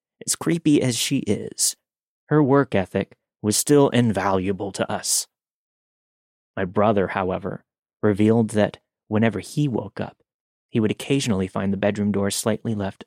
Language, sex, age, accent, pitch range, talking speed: English, male, 30-49, American, 95-115 Hz, 140 wpm